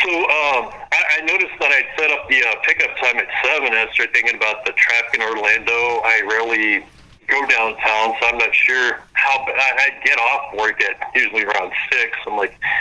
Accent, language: American, English